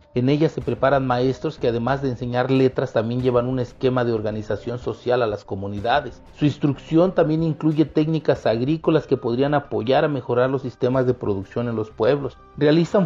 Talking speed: 180 wpm